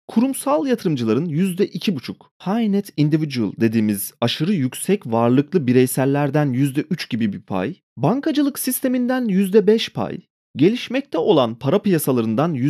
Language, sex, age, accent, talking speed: Turkish, male, 30-49, native, 110 wpm